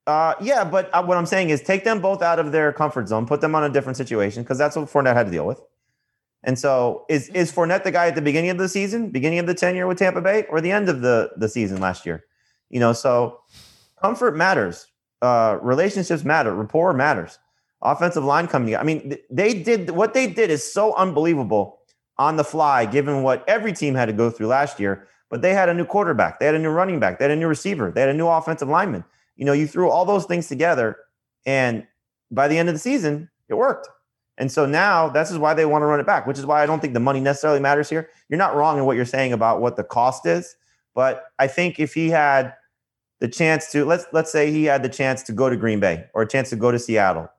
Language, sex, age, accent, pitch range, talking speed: English, male, 30-49, American, 120-170 Hz, 250 wpm